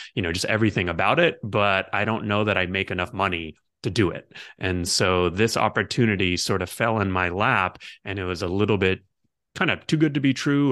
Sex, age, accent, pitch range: male, 30-49, American, 90-105 Hz